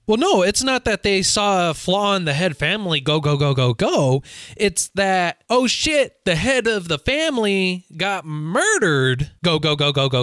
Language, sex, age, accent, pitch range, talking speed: English, male, 20-39, American, 140-205 Hz, 200 wpm